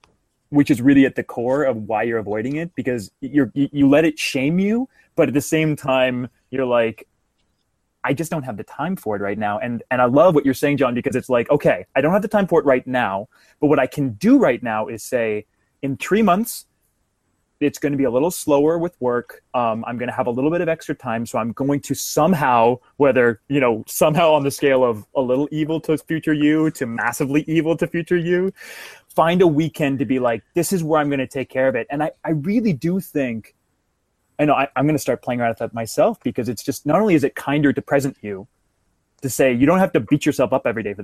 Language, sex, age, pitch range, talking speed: English, male, 20-39, 120-160 Hz, 245 wpm